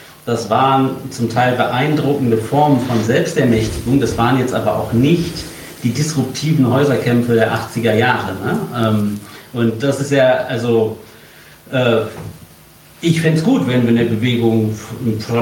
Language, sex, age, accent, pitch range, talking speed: German, male, 40-59, German, 110-130 Hz, 130 wpm